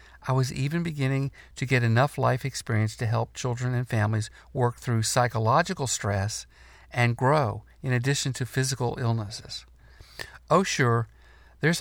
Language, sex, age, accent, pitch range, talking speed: English, male, 50-69, American, 105-135 Hz, 140 wpm